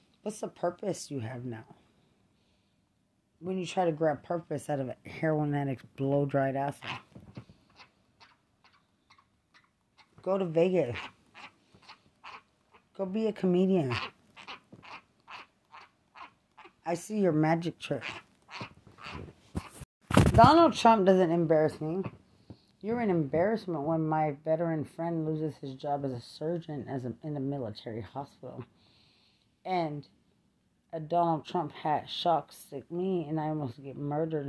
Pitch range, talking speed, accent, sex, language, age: 135-160 Hz, 115 wpm, American, female, English, 30-49